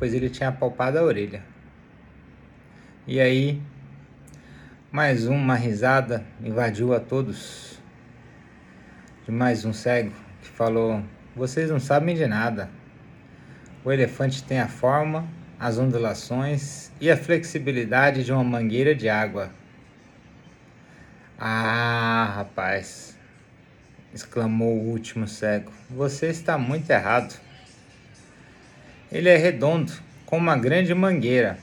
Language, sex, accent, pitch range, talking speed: Portuguese, male, Brazilian, 115-155 Hz, 110 wpm